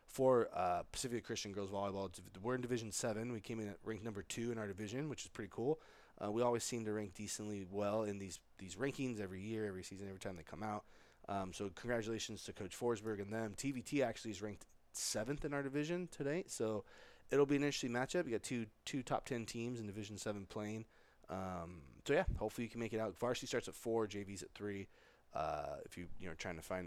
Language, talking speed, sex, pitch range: English, 230 wpm, male, 100-115 Hz